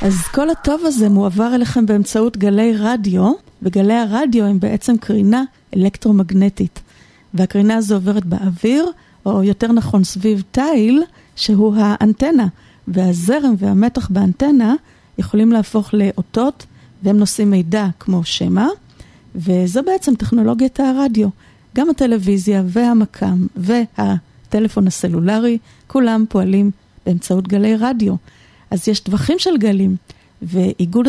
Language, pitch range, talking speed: Hebrew, 195-240 Hz, 110 wpm